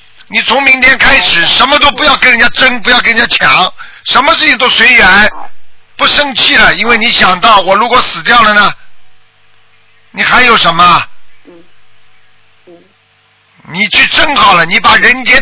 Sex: male